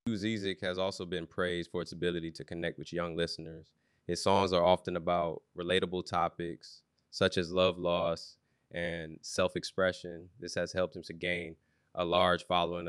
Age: 20-39